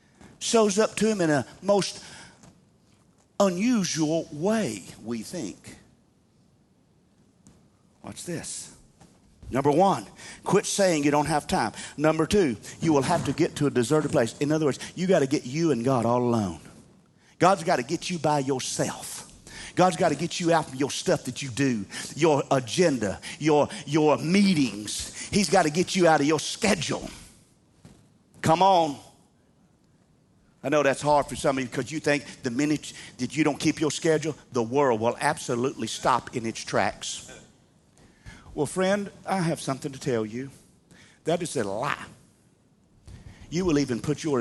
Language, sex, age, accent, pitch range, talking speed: English, male, 40-59, American, 120-160 Hz, 165 wpm